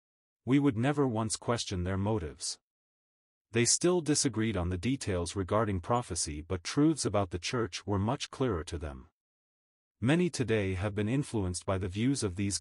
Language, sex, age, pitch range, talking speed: English, male, 30-49, 90-125 Hz, 165 wpm